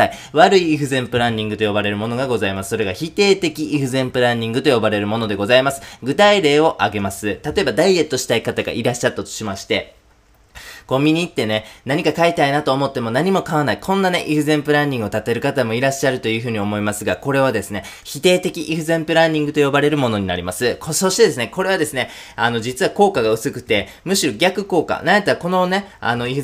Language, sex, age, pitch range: Japanese, male, 20-39, 115-155 Hz